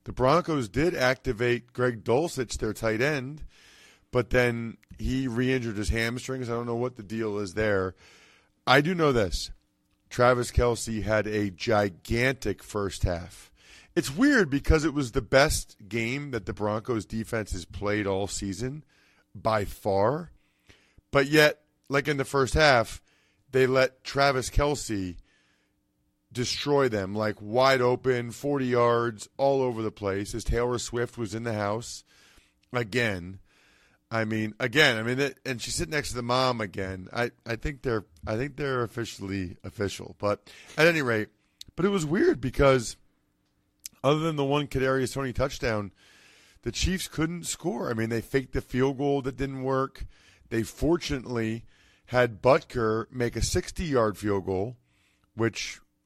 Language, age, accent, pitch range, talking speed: English, 40-59, American, 105-135 Hz, 155 wpm